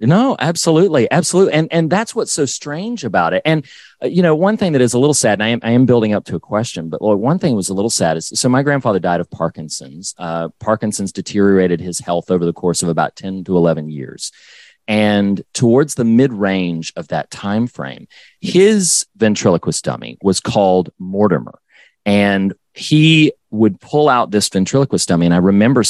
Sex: male